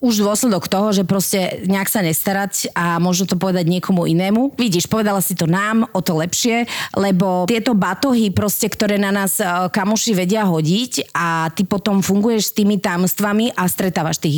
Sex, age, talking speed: female, 30-49, 180 wpm